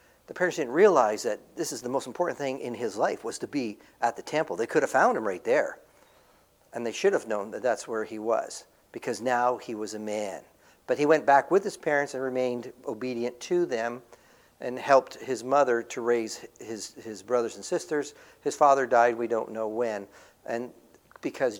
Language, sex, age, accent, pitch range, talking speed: English, male, 50-69, American, 115-155 Hz, 210 wpm